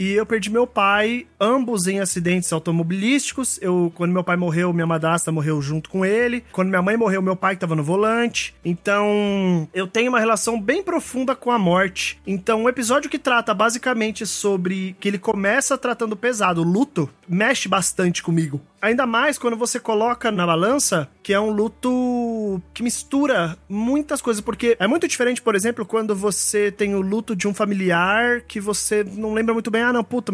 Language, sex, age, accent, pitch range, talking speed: Portuguese, male, 20-39, Brazilian, 190-240 Hz, 190 wpm